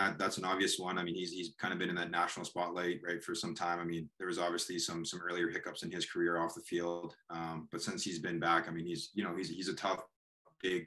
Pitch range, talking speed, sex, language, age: 85-100 Hz, 275 wpm, male, English, 20-39